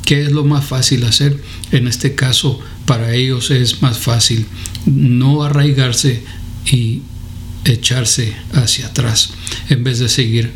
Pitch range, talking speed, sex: 115-145 Hz, 135 wpm, male